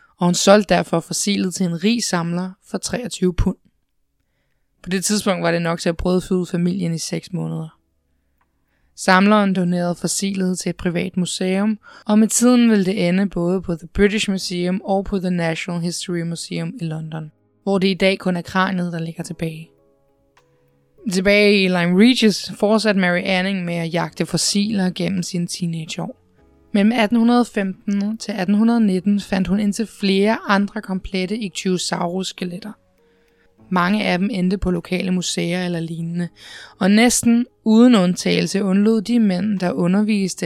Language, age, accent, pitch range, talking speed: Danish, 20-39, native, 170-205 Hz, 155 wpm